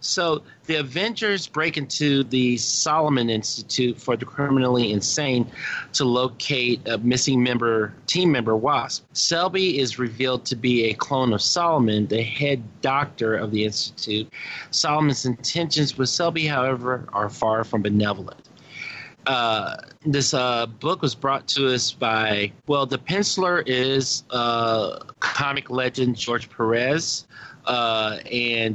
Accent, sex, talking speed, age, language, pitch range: American, male, 135 wpm, 40-59, English, 115-145 Hz